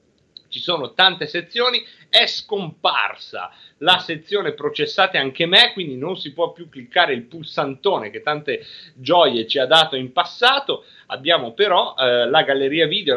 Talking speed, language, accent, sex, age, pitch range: 150 wpm, Italian, native, male, 30-49, 135-200 Hz